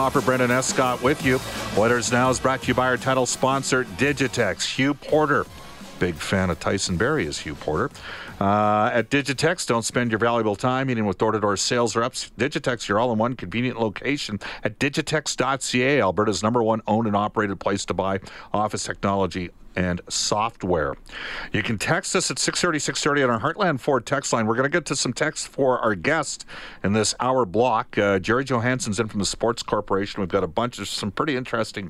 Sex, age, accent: male, 50-69, American